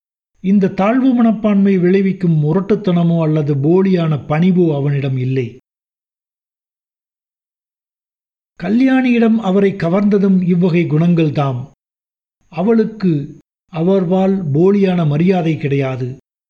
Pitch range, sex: 150-195 Hz, male